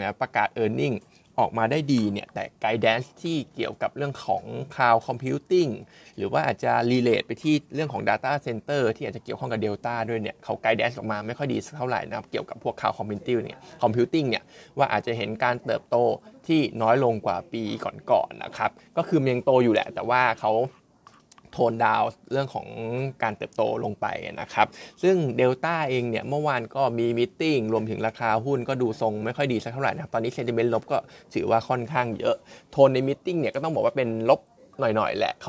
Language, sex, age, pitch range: Thai, male, 20-39, 115-135 Hz